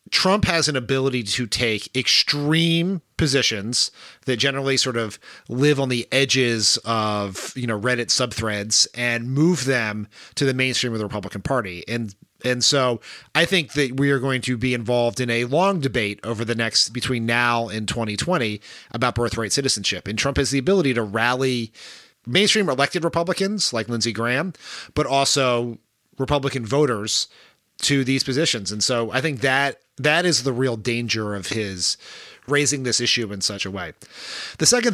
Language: English